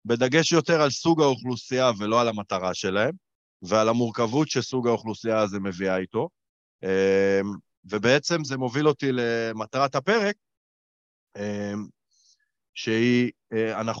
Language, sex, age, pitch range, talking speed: Hebrew, male, 30-49, 100-130 Hz, 100 wpm